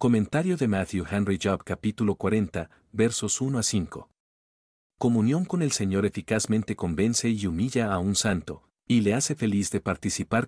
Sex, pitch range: male, 95-115 Hz